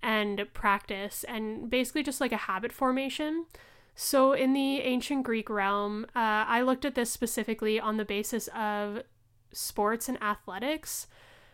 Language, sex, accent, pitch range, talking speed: English, female, American, 205-240 Hz, 145 wpm